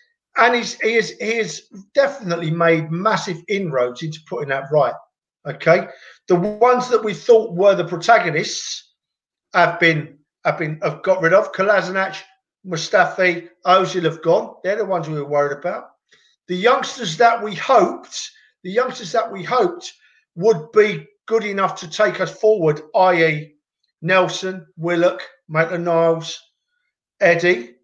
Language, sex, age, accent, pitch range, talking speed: English, male, 50-69, British, 165-230 Hz, 145 wpm